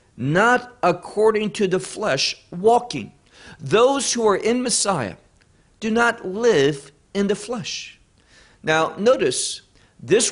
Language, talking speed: English, 115 wpm